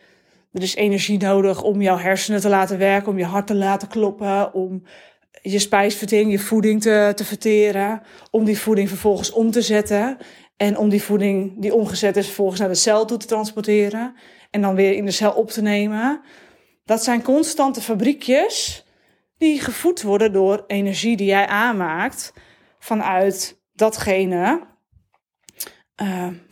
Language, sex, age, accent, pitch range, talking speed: Dutch, female, 20-39, Dutch, 195-220 Hz, 155 wpm